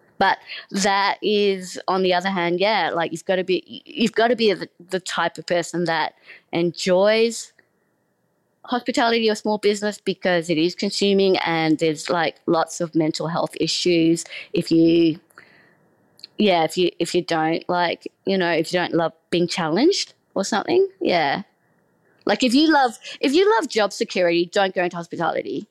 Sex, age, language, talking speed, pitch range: female, 20-39, English, 170 wpm, 170-225 Hz